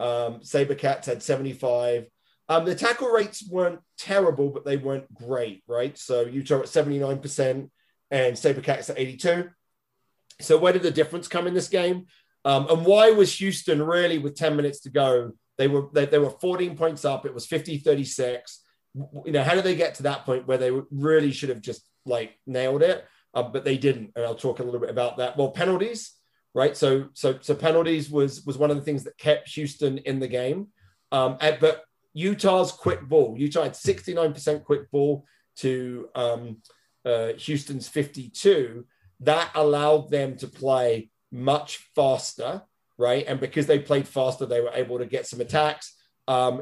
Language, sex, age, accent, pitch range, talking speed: English, male, 30-49, British, 130-155 Hz, 185 wpm